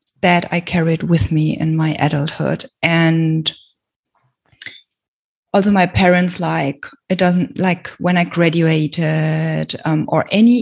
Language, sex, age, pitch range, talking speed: English, female, 20-39, 160-185 Hz, 125 wpm